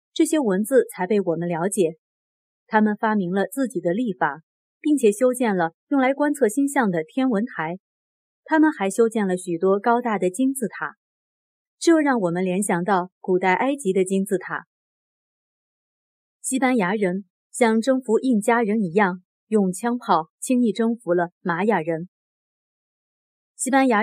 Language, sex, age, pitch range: Chinese, female, 30-49, 185-255 Hz